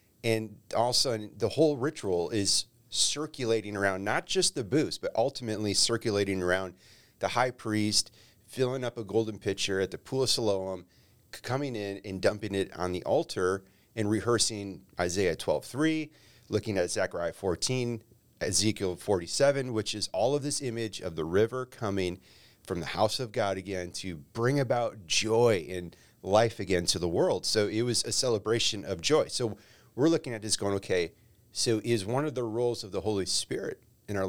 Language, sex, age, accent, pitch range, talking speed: English, male, 40-59, American, 100-120 Hz, 175 wpm